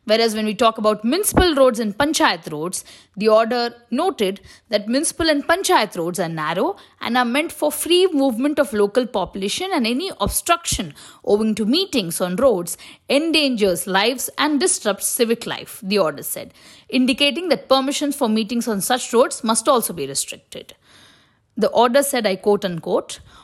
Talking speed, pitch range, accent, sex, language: 165 wpm, 205-285 Hz, Indian, female, English